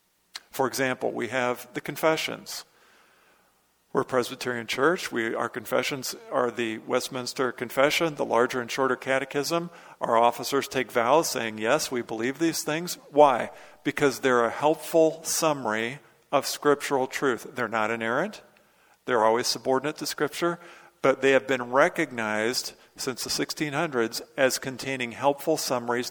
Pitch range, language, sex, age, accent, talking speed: 125-150 Hz, English, male, 50-69, American, 140 wpm